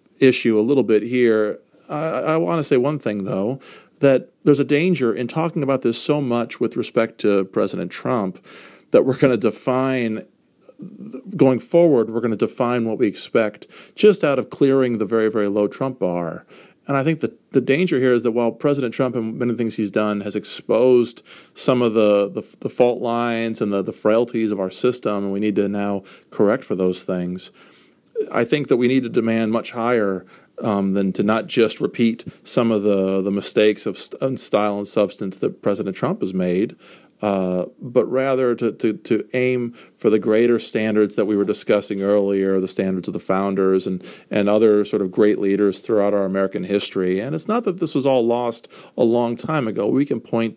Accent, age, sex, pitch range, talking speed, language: American, 40-59, male, 100-125 Hz, 200 wpm, English